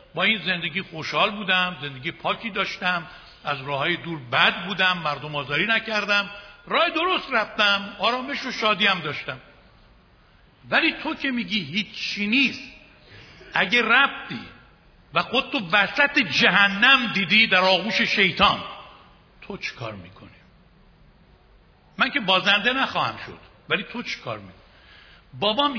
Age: 60-79